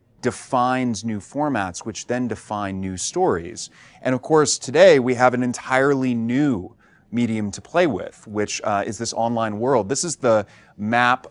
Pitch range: 95-120 Hz